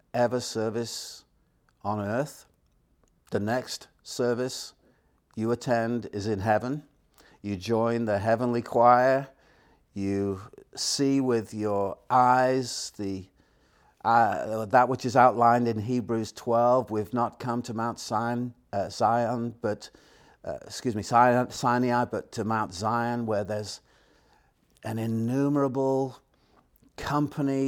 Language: English